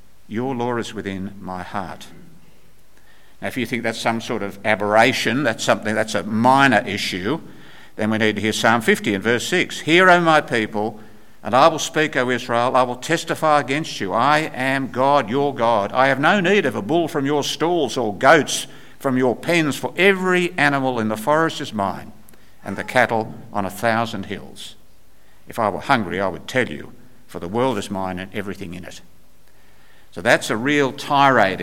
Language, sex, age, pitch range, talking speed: English, male, 60-79, 105-140 Hz, 195 wpm